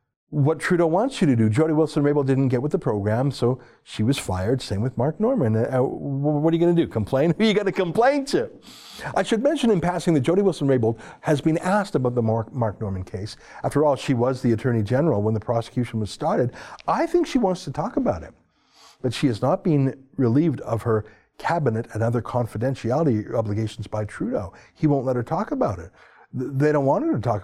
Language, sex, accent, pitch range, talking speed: English, male, American, 115-175 Hz, 220 wpm